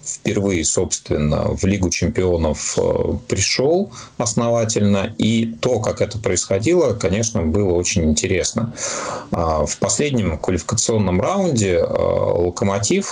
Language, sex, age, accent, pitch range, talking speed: Russian, male, 30-49, native, 90-115 Hz, 95 wpm